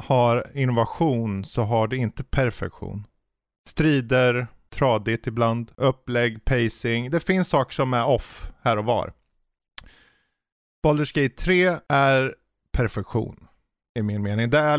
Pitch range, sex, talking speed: 110-135 Hz, male, 125 wpm